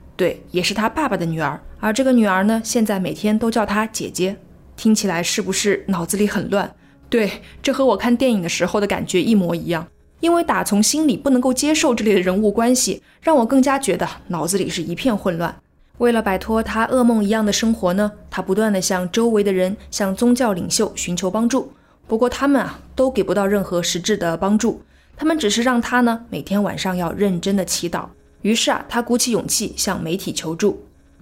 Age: 20-39